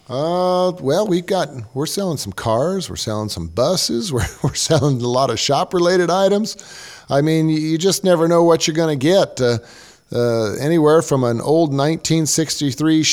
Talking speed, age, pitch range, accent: 175 wpm, 40-59, 105-155 Hz, American